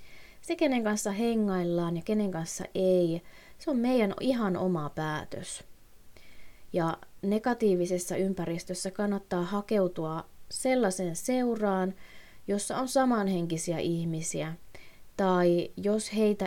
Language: Finnish